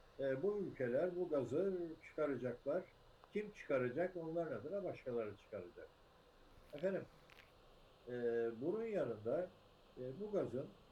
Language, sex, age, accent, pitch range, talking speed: Turkish, male, 60-79, native, 115-170 Hz, 105 wpm